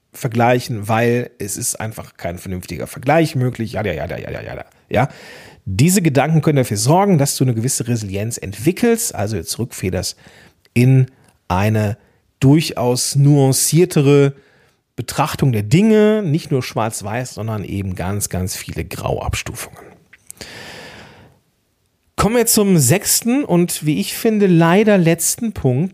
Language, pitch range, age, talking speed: German, 110-160 Hz, 40-59, 130 wpm